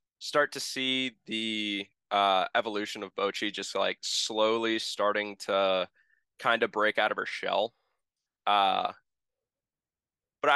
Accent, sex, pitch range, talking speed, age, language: American, male, 95-130 Hz, 125 wpm, 20-39, English